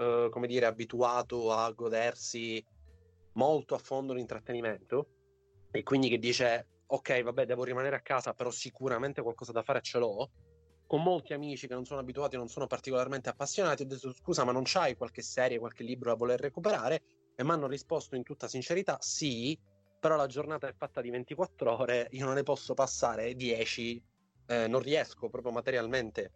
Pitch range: 110-135 Hz